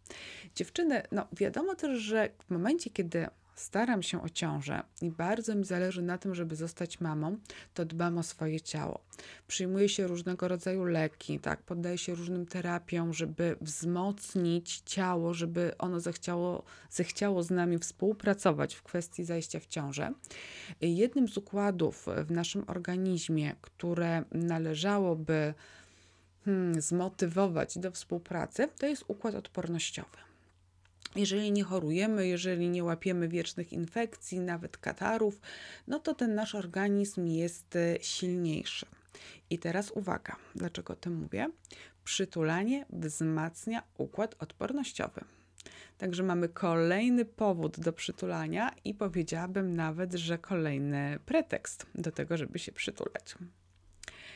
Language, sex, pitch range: Polish, female, 165-200 Hz